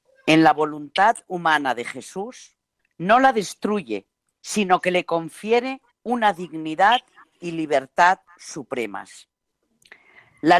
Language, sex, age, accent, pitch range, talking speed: Spanish, female, 40-59, Spanish, 160-225 Hz, 110 wpm